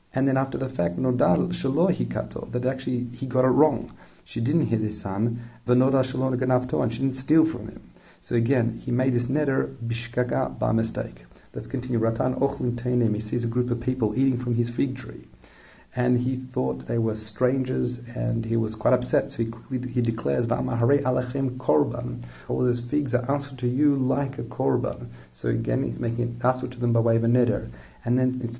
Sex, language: male, English